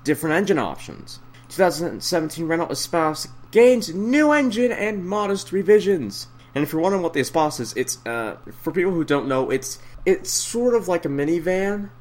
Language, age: English, 30-49